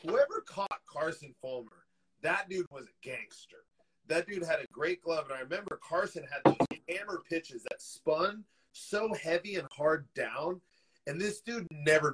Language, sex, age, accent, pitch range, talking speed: English, male, 30-49, American, 145-200 Hz, 165 wpm